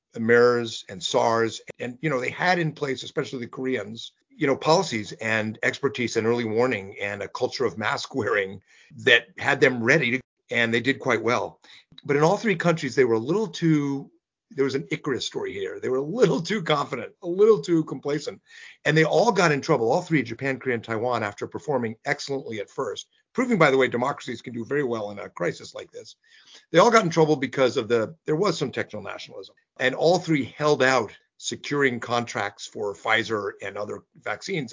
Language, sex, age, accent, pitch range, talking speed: English, male, 50-69, American, 115-160 Hz, 205 wpm